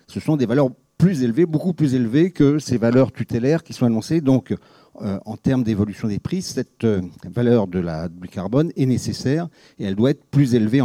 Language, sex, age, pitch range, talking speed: French, male, 50-69, 105-135 Hz, 210 wpm